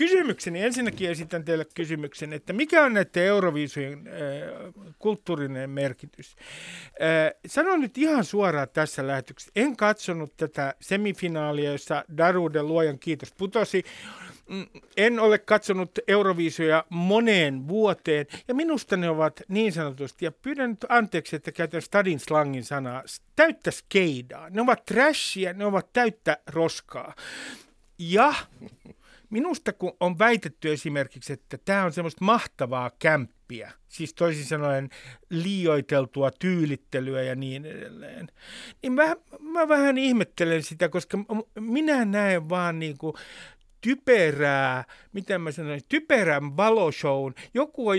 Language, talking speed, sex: Finnish, 125 wpm, male